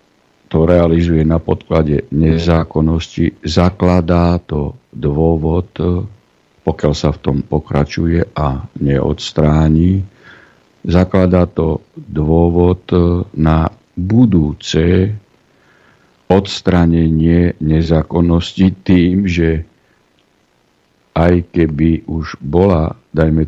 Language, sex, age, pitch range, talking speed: Slovak, male, 60-79, 75-90 Hz, 70 wpm